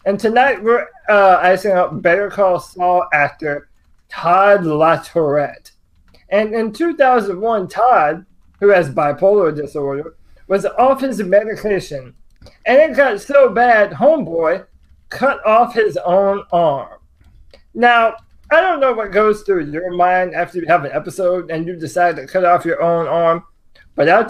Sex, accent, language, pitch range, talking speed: male, American, English, 160-210 Hz, 150 wpm